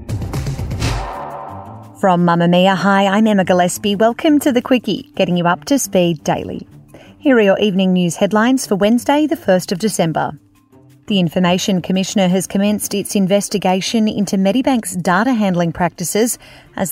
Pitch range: 175-210 Hz